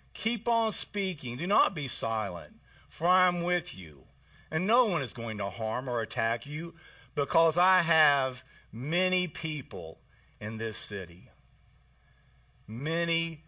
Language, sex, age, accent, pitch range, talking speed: English, male, 50-69, American, 130-175 Hz, 140 wpm